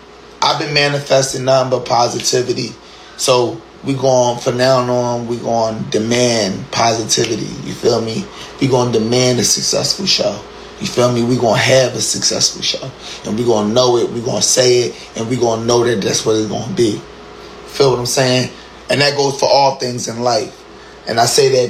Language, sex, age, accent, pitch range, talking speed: English, male, 20-39, American, 120-160 Hz, 210 wpm